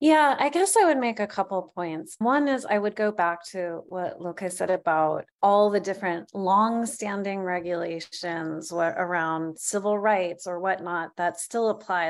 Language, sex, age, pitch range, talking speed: English, female, 30-49, 180-225 Hz, 170 wpm